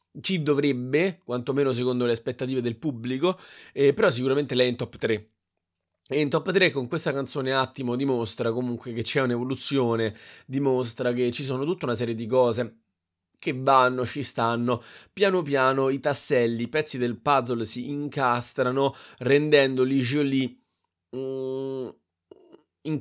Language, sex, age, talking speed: Italian, male, 20-39, 145 wpm